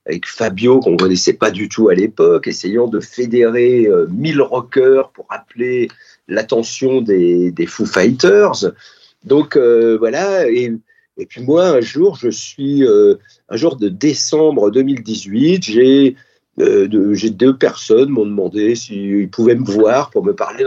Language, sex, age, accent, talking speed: French, male, 40-59, French, 160 wpm